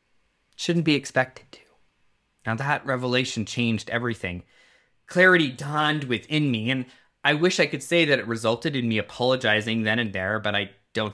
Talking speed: 165 wpm